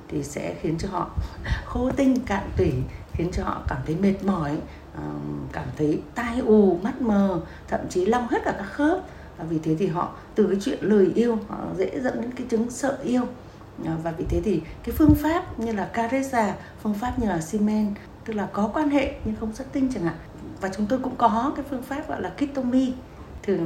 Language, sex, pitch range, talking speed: Vietnamese, female, 175-255 Hz, 220 wpm